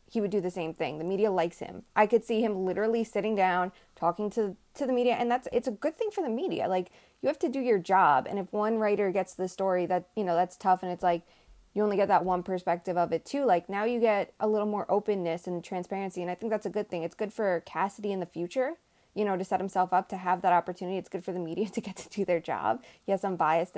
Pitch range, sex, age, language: 180-220 Hz, female, 20-39, English